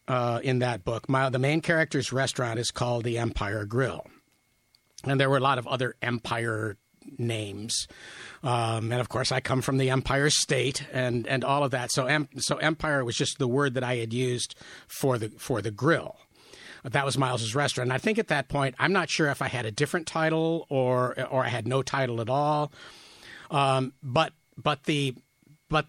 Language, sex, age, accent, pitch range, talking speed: English, male, 50-69, American, 120-145 Hz, 200 wpm